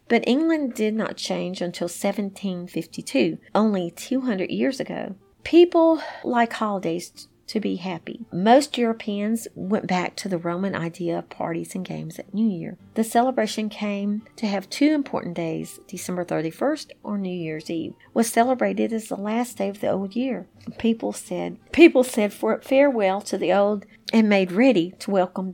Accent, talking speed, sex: American, 165 wpm, female